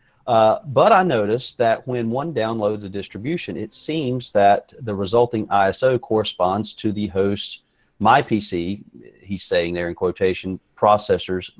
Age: 40-59